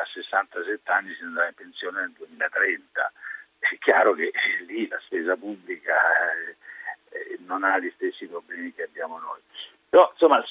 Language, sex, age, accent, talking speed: Italian, male, 50-69, native, 150 wpm